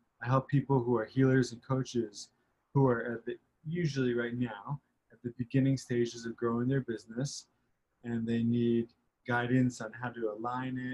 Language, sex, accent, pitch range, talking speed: English, male, American, 115-130 Hz, 175 wpm